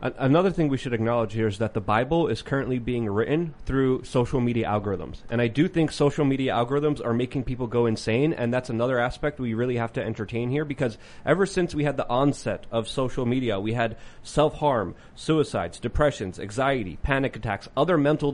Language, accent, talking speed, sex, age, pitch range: English, American, 195 wpm, male, 30-49, 125-155 Hz